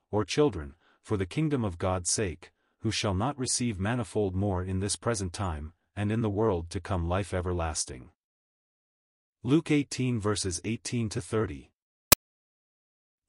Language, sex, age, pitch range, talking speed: English, male, 40-59, 95-120 Hz, 135 wpm